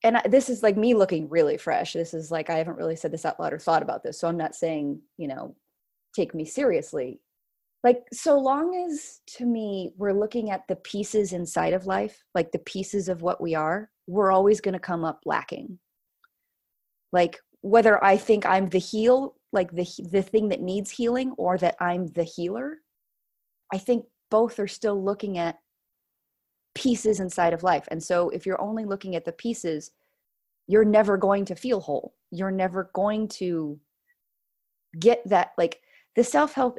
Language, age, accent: English, 20-39, American